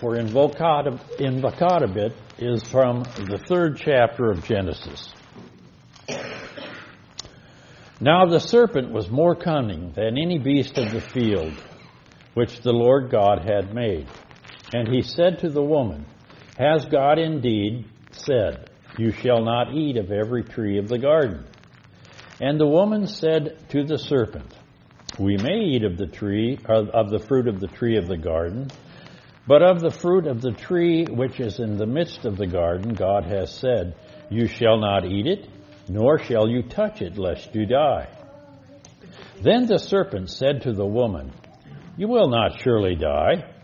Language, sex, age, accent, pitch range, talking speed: English, male, 60-79, American, 105-145 Hz, 155 wpm